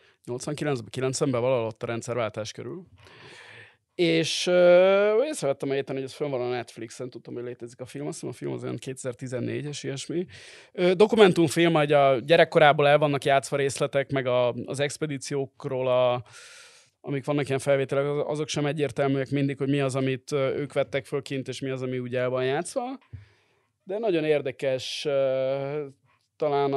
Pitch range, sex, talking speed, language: 125-145 Hz, male, 160 wpm, Hungarian